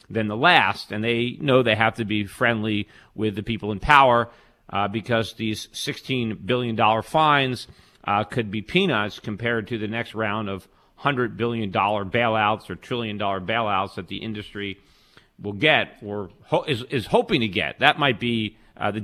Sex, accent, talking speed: male, American, 175 wpm